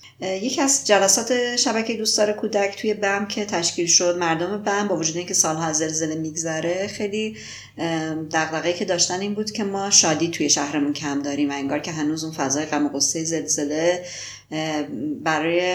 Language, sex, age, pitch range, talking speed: Persian, female, 30-49, 155-200 Hz, 160 wpm